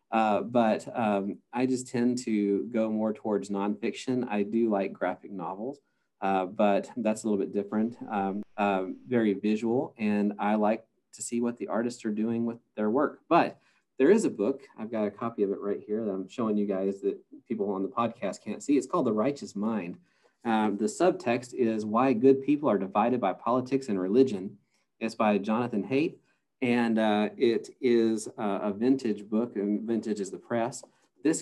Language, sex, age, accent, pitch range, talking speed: English, male, 40-59, American, 105-120 Hz, 190 wpm